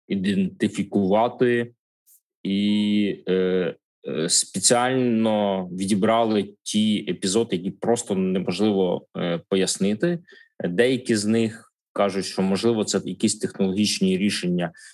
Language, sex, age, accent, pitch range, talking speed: Ukrainian, male, 20-39, native, 95-120 Hz, 90 wpm